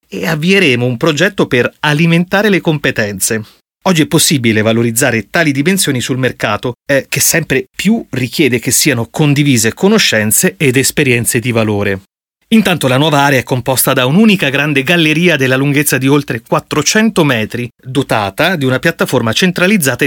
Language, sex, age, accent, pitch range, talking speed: Italian, male, 30-49, native, 125-165 Hz, 150 wpm